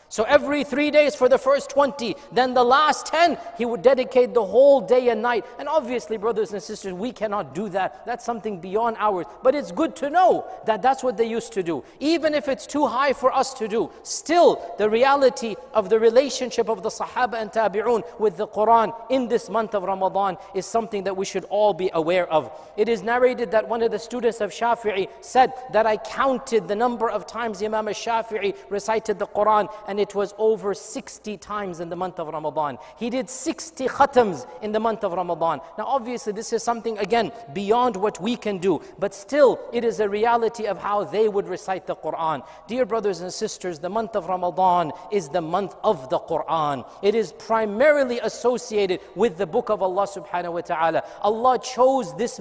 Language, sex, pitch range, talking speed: English, male, 200-245 Hz, 205 wpm